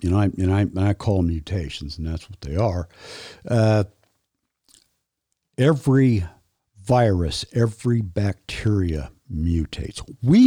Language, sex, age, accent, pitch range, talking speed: English, male, 60-79, American, 90-120 Hz, 120 wpm